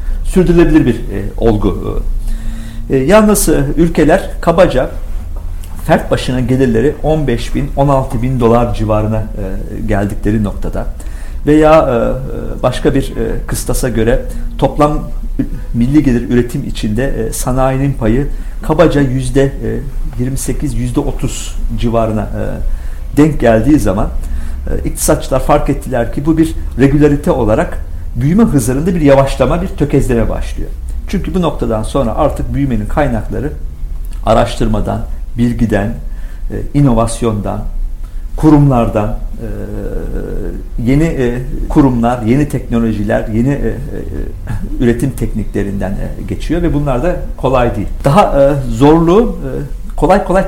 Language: Turkish